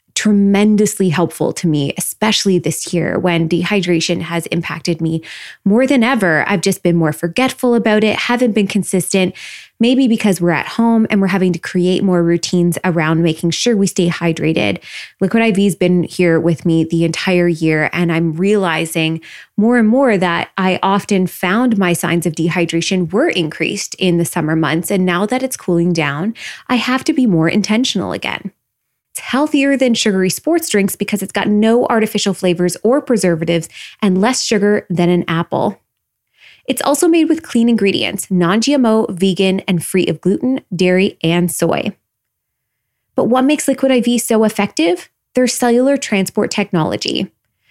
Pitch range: 175-230 Hz